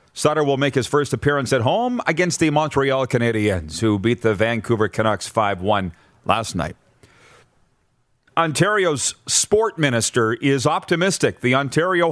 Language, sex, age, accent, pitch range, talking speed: English, male, 40-59, American, 120-155 Hz, 135 wpm